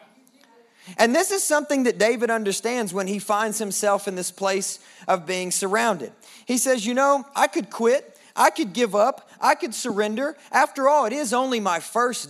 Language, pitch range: English, 180-245 Hz